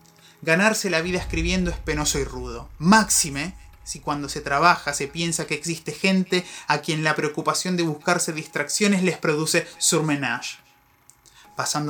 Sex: male